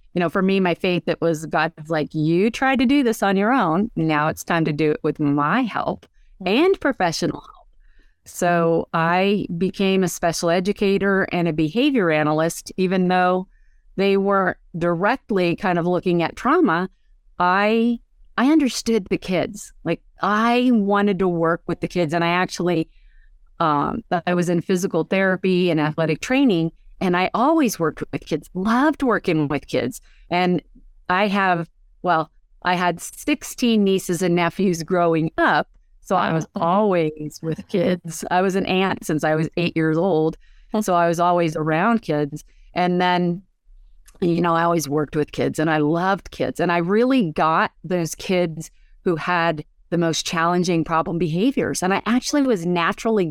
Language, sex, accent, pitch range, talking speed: English, female, American, 165-205 Hz, 170 wpm